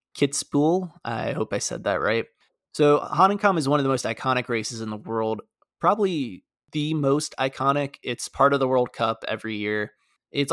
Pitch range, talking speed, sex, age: 115-145 Hz, 180 wpm, male, 20-39